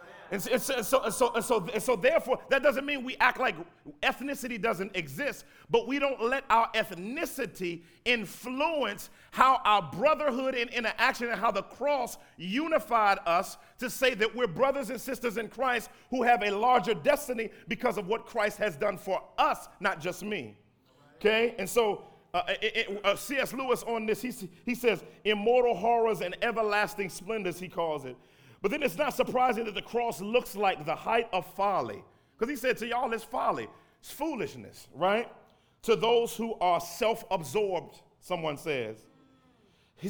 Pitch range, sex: 190-250 Hz, male